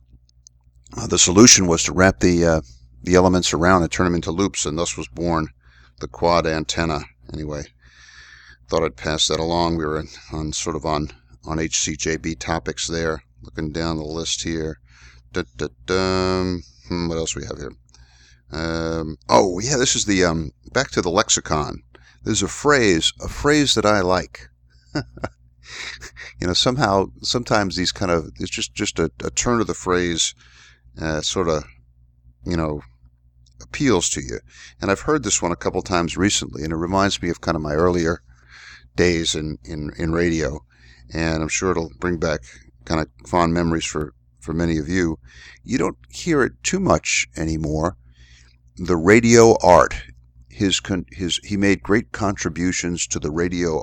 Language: English